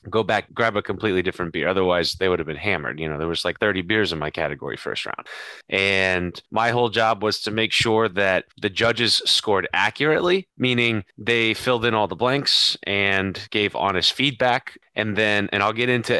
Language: English